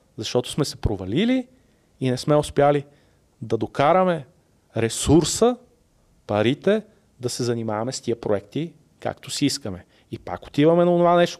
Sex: male